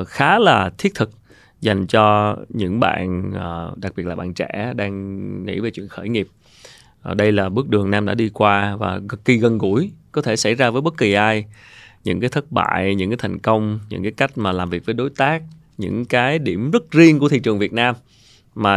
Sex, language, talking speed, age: male, Vietnamese, 215 wpm, 20-39